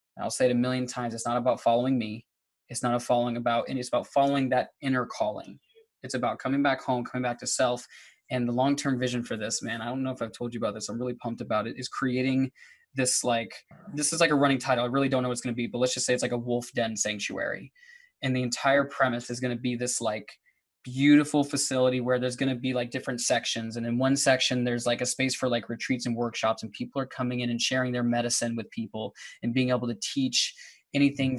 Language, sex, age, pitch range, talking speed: English, male, 20-39, 120-130 Hz, 250 wpm